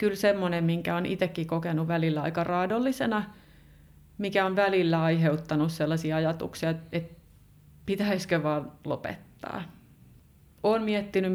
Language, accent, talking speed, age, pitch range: Finnish, native, 110 wpm, 30-49, 155-185 Hz